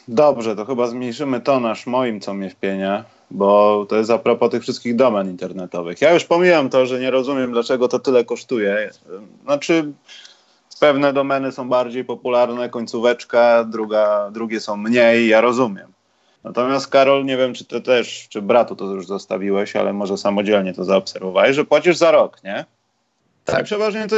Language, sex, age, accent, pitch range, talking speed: Polish, male, 30-49, native, 105-135 Hz, 165 wpm